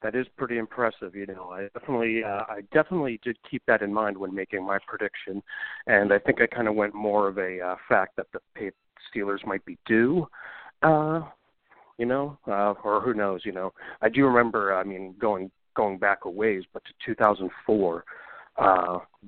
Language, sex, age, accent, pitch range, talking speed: English, male, 40-59, American, 95-110 Hz, 185 wpm